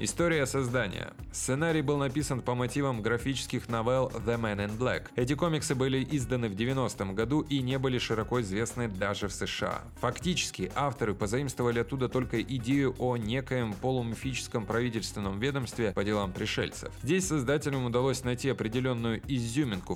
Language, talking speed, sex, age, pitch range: Russian, 145 wpm, male, 20-39, 105-135 Hz